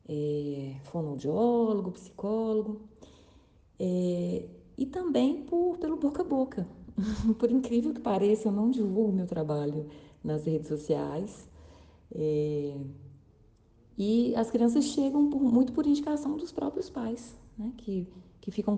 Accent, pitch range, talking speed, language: Brazilian, 160-235 Hz, 125 wpm, Portuguese